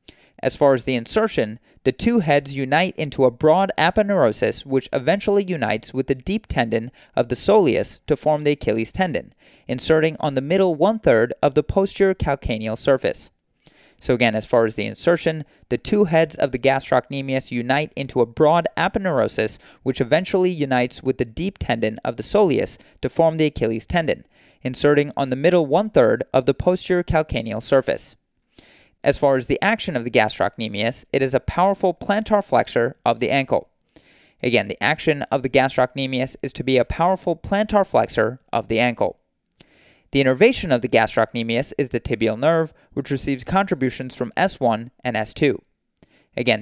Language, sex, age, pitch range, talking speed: English, male, 30-49, 125-165 Hz, 170 wpm